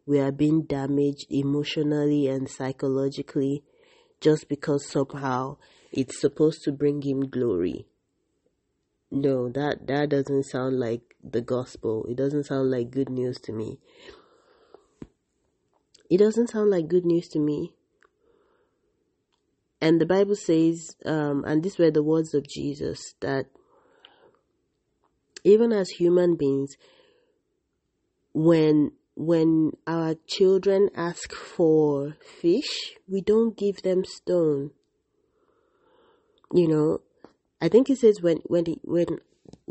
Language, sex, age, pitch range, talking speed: English, female, 30-49, 145-200 Hz, 120 wpm